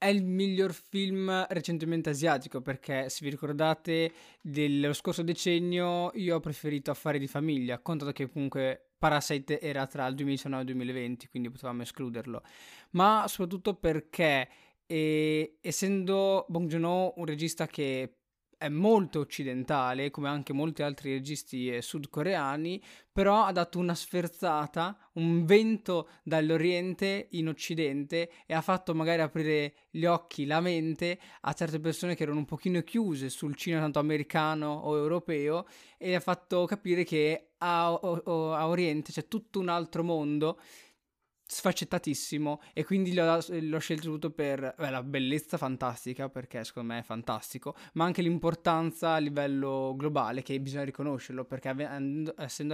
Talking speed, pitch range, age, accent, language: 145 wpm, 145-175 Hz, 20-39, native, Italian